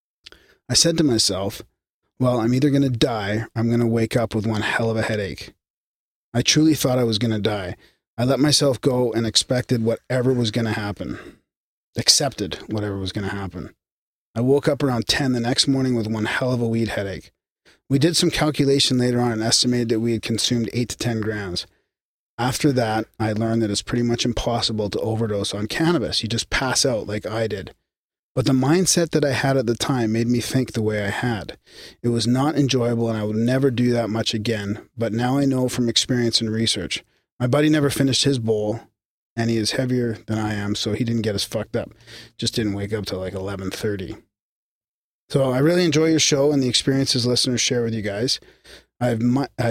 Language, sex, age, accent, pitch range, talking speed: English, male, 30-49, American, 110-130 Hz, 215 wpm